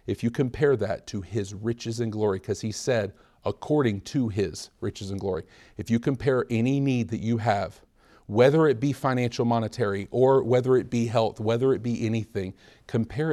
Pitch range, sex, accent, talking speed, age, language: 100-125 Hz, male, American, 185 wpm, 40-59, English